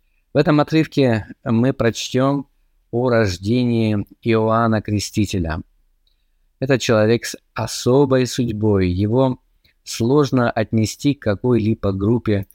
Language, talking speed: Russian, 95 wpm